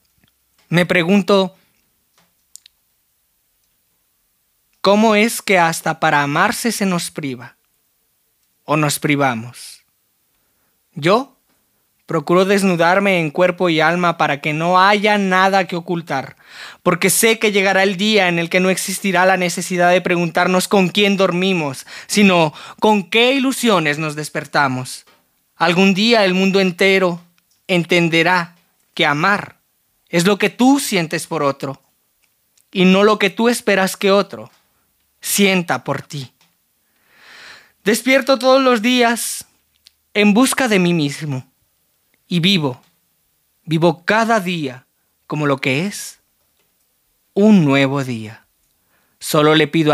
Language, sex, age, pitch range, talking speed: Spanish, male, 20-39, 150-195 Hz, 125 wpm